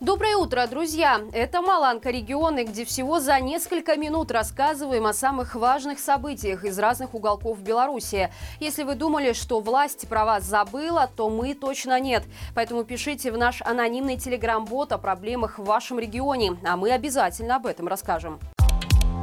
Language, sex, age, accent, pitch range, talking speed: Russian, female, 20-39, native, 215-285 Hz, 155 wpm